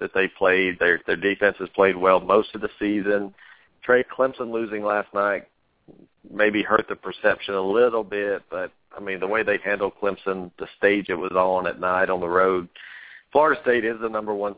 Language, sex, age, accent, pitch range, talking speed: English, male, 50-69, American, 95-110 Hz, 200 wpm